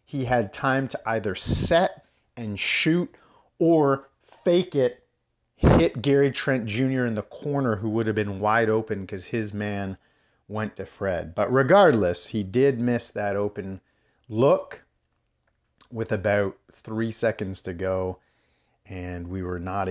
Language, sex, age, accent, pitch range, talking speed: English, male, 40-59, American, 95-135 Hz, 145 wpm